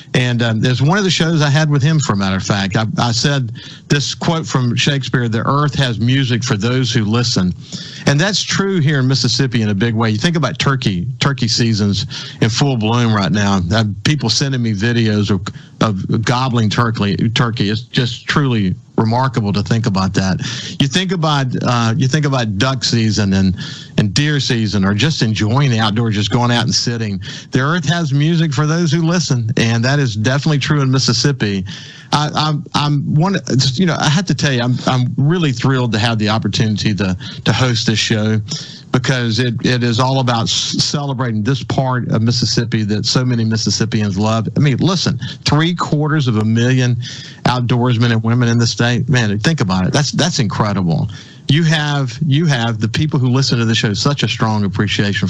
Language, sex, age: English, male, 50-69